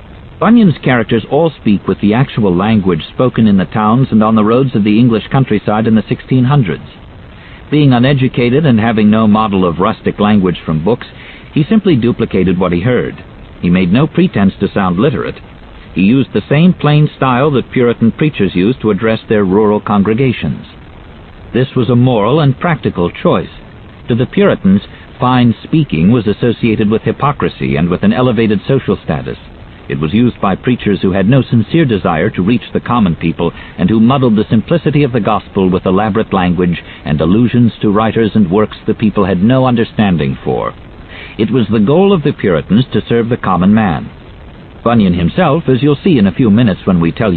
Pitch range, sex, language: 100-130 Hz, male, English